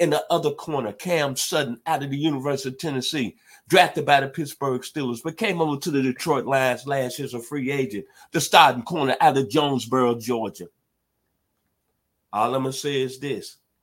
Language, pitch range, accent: English, 120-150 Hz, American